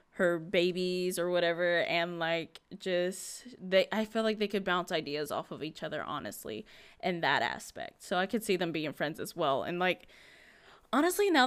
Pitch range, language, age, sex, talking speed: 165-205 Hz, English, 20-39, female, 190 wpm